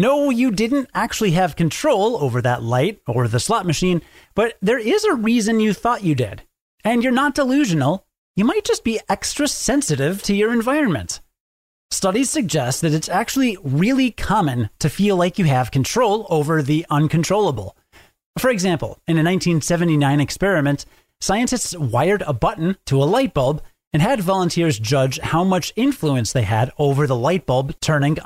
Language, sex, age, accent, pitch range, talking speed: English, male, 30-49, American, 140-205 Hz, 170 wpm